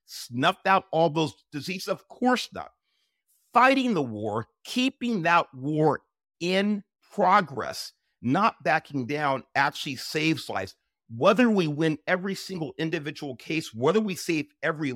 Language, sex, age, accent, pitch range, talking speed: English, male, 50-69, American, 120-185 Hz, 130 wpm